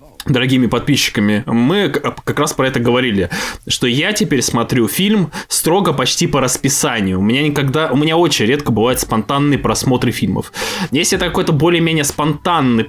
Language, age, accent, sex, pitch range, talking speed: Russian, 20-39, native, male, 125-160 Hz, 160 wpm